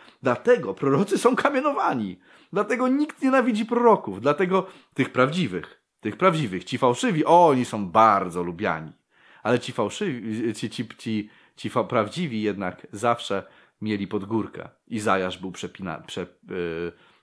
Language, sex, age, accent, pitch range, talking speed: Polish, male, 30-49, native, 100-165 Hz, 145 wpm